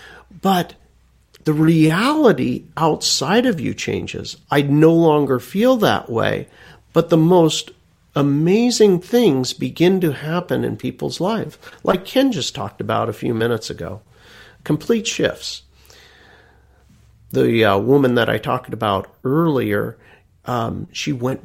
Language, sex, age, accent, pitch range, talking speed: English, male, 50-69, American, 110-160 Hz, 130 wpm